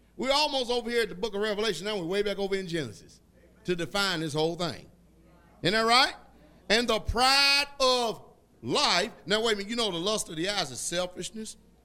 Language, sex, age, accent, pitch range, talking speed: English, male, 50-69, American, 135-205 Hz, 215 wpm